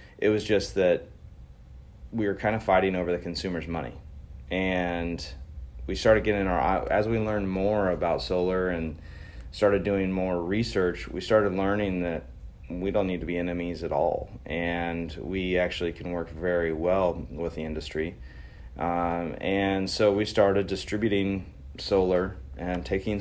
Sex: male